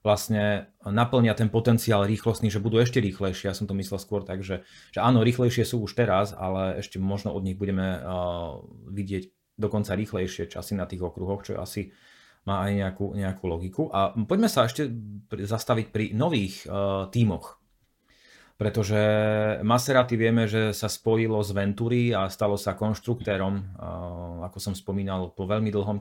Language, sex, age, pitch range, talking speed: Slovak, male, 30-49, 100-115 Hz, 165 wpm